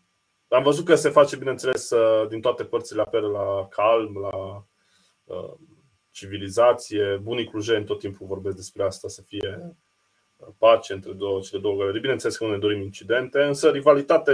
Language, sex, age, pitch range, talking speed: Romanian, male, 20-39, 95-120 Hz, 160 wpm